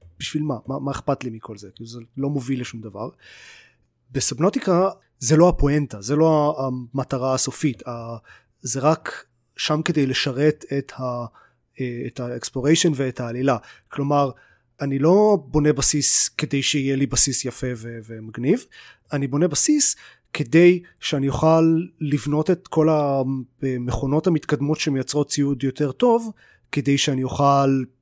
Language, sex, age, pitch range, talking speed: Hebrew, male, 30-49, 125-155 Hz, 130 wpm